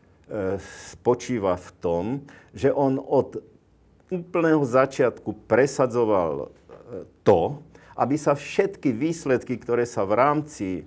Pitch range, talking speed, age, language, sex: 105-135 Hz, 100 wpm, 50-69, Slovak, male